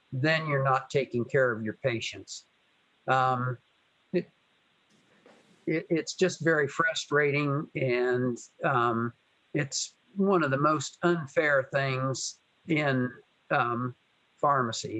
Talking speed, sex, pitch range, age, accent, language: 100 wpm, male, 130-160 Hz, 50-69, American, English